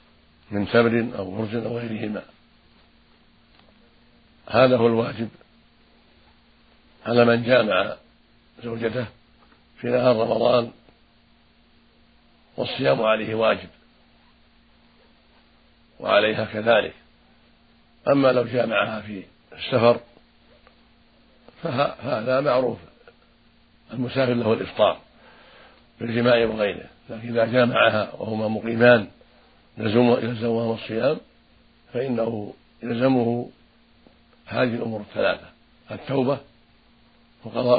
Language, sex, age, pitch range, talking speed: Arabic, male, 60-79, 110-125 Hz, 80 wpm